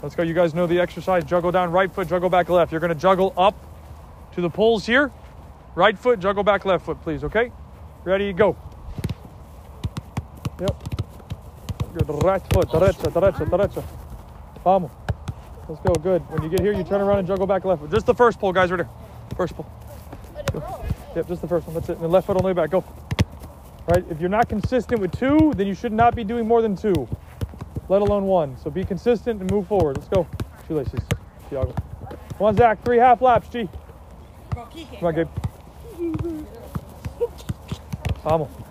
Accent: American